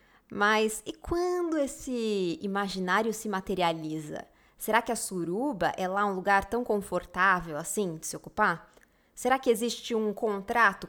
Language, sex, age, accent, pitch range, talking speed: Portuguese, female, 20-39, Brazilian, 185-235 Hz, 145 wpm